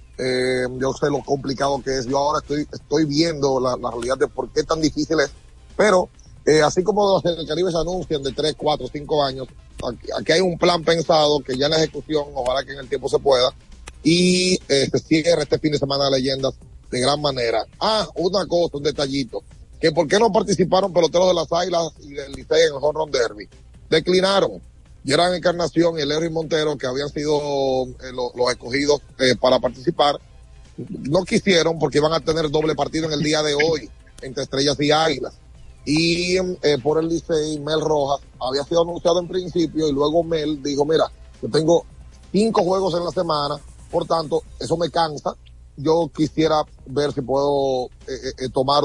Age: 30-49